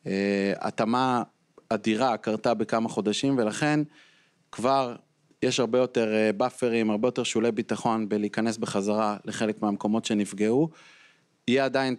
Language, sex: Hebrew, male